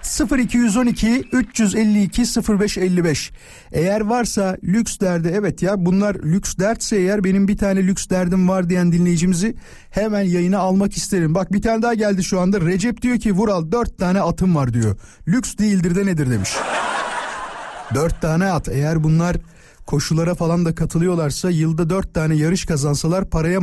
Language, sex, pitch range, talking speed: Turkish, male, 120-195 Hz, 155 wpm